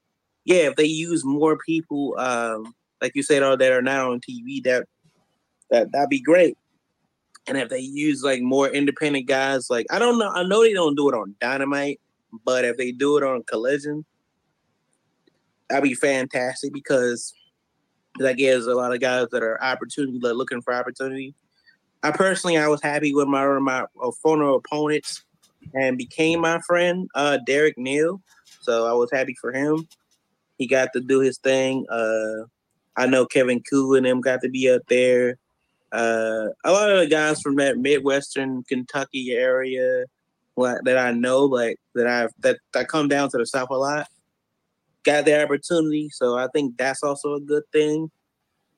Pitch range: 125-155 Hz